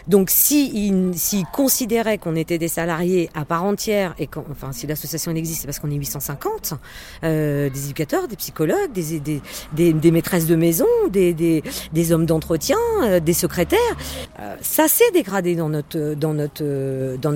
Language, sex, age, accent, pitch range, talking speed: French, female, 40-59, French, 140-180 Hz, 170 wpm